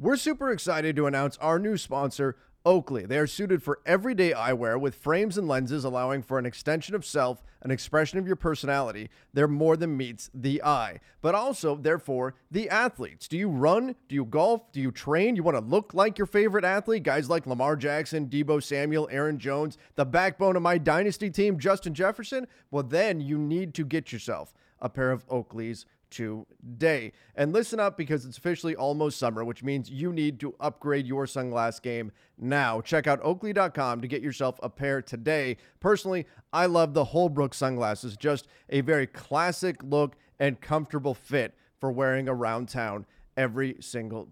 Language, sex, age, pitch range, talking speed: English, male, 30-49, 130-175 Hz, 180 wpm